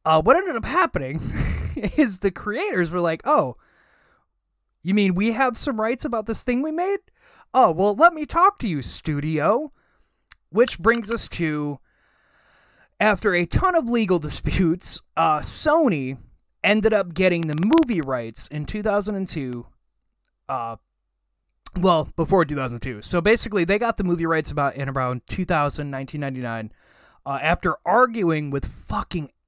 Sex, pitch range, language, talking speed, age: male, 150-220 Hz, English, 150 wpm, 20-39